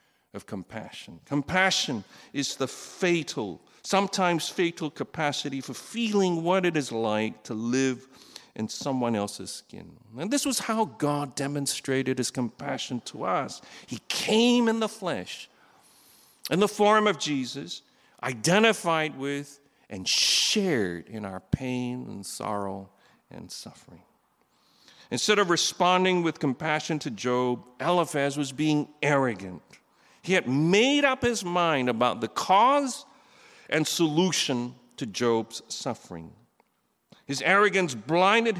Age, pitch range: 50-69, 130-190 Hz